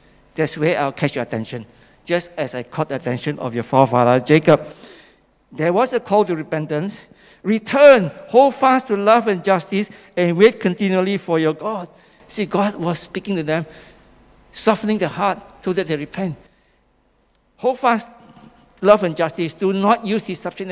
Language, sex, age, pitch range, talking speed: English, male, 60-79, 160-210 Hz, 165 wpm